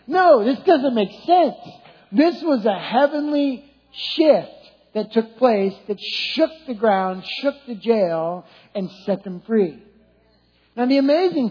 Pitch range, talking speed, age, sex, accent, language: 175-270 Hz, 140 wpm, 50-69, male, American, English